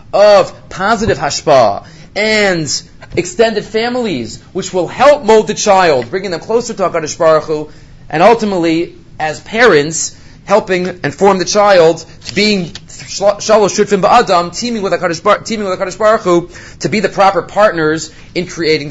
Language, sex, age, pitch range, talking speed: English, male, 30-49, 150-210 Hz, 125 wpm